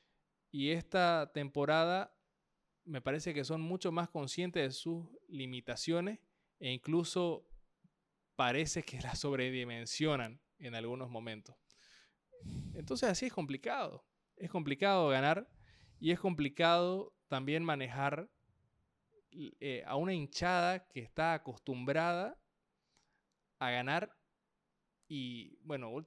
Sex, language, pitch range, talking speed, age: male, Spanish, 125-170 Hz, 105 wpm, 20-39